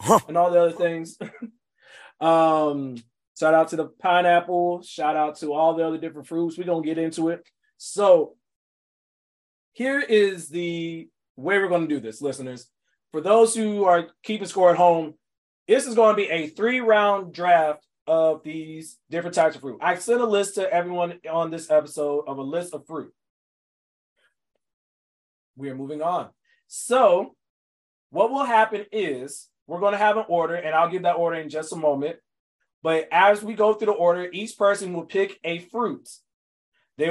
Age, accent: 20-39, American